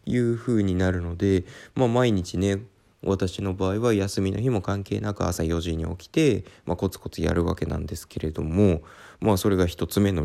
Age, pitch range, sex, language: 20-39, 95-140 Hz, male, Japanese